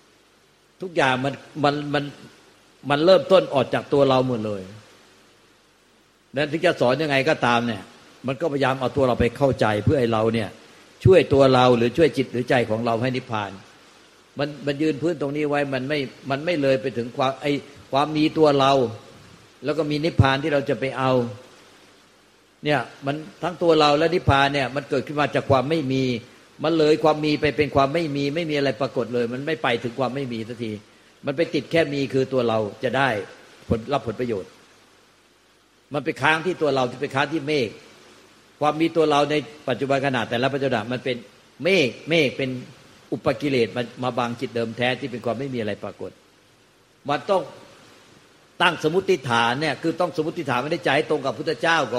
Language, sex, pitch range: Thai, male, 125-155 Hz